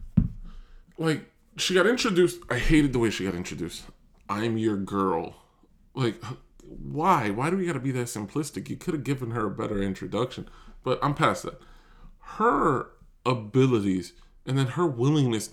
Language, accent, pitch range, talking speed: English, American, 100-135 Hz, 160 wpm